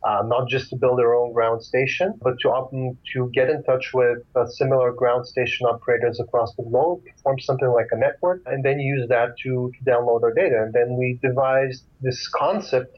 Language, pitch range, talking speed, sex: English, 120-130 Hz, 200 wpm, male